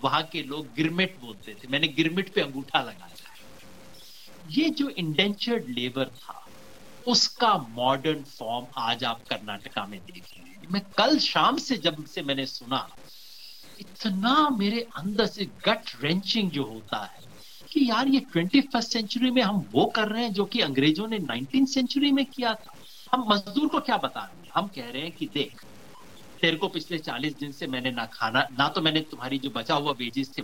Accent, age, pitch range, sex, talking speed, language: native, 60-79, 130-215 Hz, male, 170 wpm, Hindi